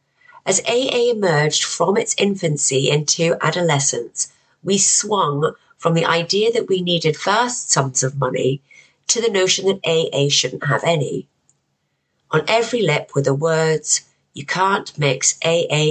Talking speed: 145 wpm